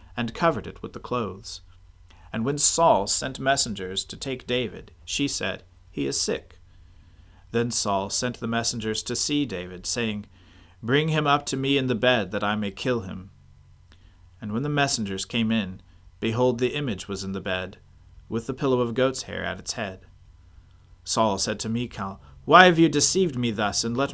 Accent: American